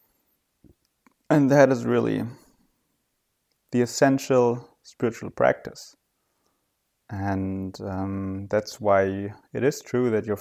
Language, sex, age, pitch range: English, male, 30-49, 100-130 Hz